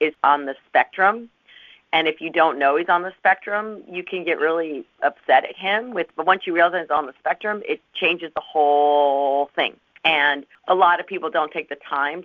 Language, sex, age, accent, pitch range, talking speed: English, female, 40-59, American, 145-230 Hz, 215 wpm